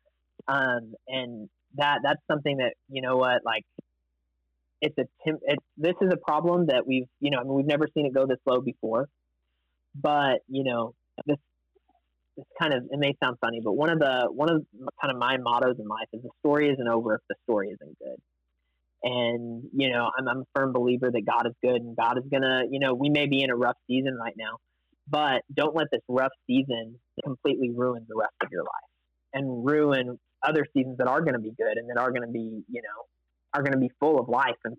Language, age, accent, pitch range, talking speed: English, 30-49, American, 120-140 Hz, 225 wpm